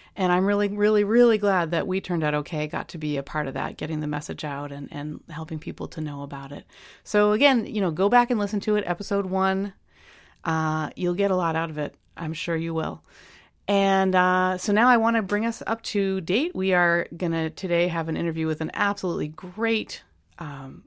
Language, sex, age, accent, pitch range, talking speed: English, female, 30-49, American, 155-195 Hz, 225 wpm